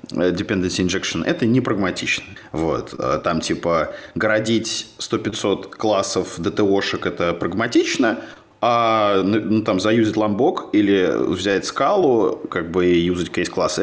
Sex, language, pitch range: male, Russian, 95-125 Hz